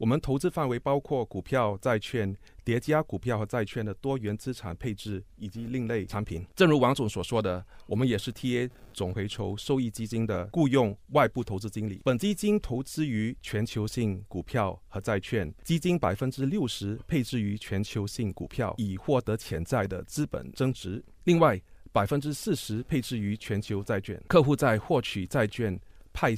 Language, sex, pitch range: Chinese, male, 100-135 Hz